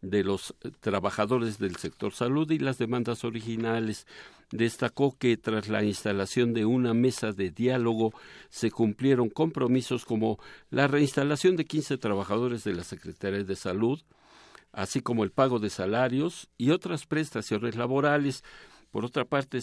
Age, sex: 60-79, male